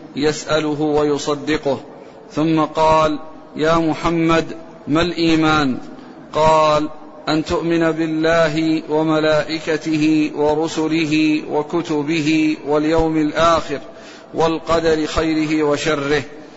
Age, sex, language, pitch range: 50-69, male, Arabic, 155-160 Hz